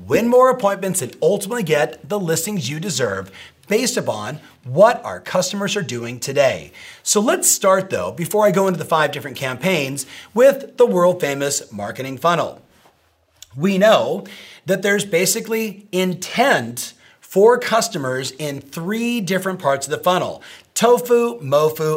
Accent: American